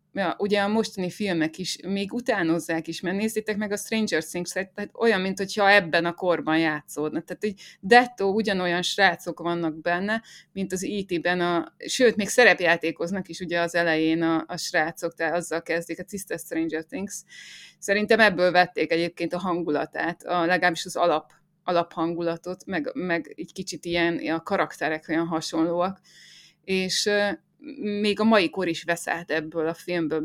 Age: 20-39